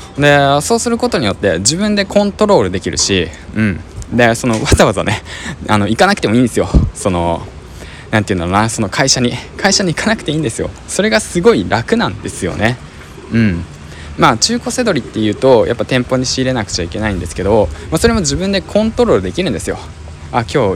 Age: 20-39